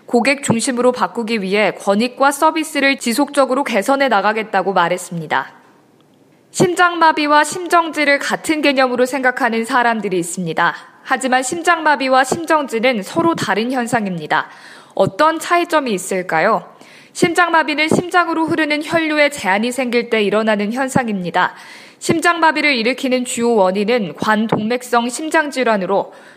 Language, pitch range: Korean, 215-300 Hz